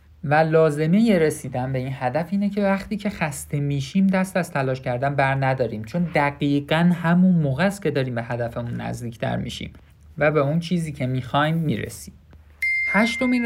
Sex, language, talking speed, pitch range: male, Persian, 165 wpm, 125-170 Hz